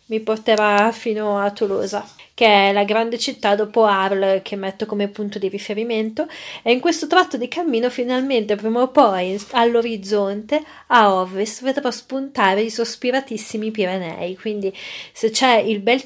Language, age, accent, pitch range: Italian, 30-49, native, 200-235 Hz